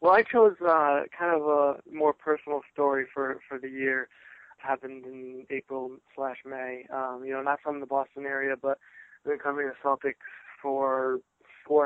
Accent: American